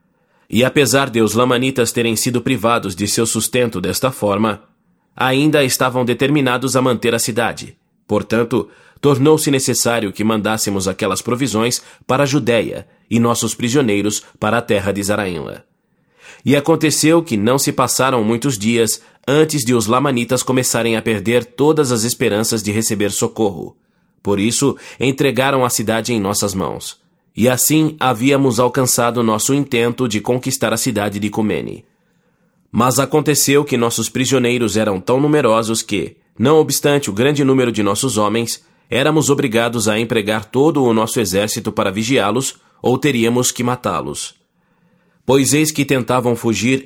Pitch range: 115-135 Hz